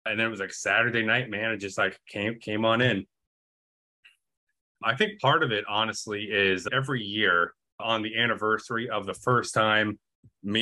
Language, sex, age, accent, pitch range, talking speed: English, male, 20-39, American, 95-115 Hz, 180 wpm